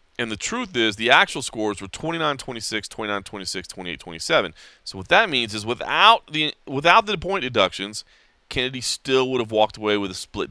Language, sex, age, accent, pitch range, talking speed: English, male, 30-49, American, 100-130 Hz, 175 wpm